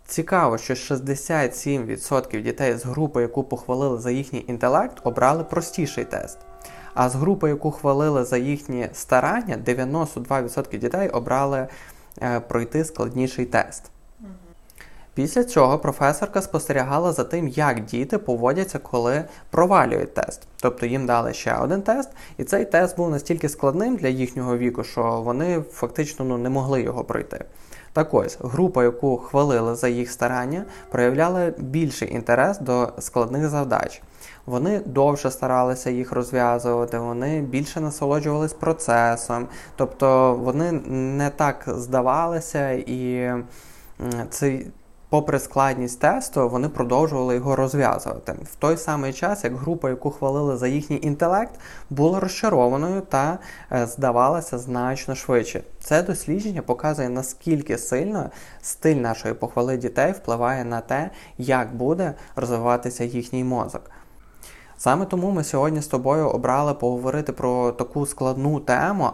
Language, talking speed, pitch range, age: Ukrainian, 125 wpm, 125-150 Hz, 20-39